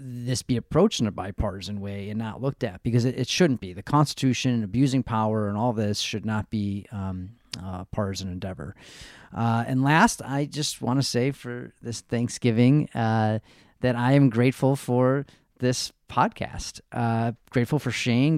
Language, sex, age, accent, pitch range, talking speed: English, male, 30-49, American, 115-140 Hz, 175 wpm